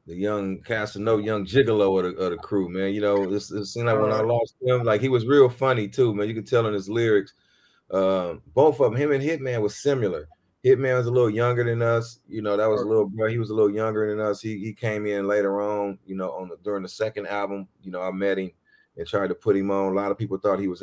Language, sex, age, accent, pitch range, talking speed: English, male, 30-49, American, 95-115 Hz, 270 wpm